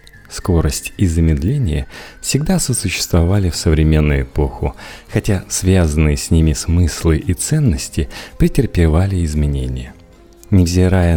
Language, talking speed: Russian, 95 wpm